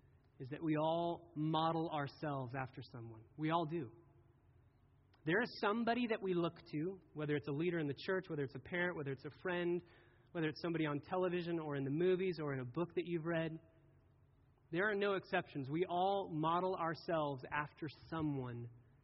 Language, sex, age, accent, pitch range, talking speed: English, male, 30-49, American, 135-185 Hz, 185 wpm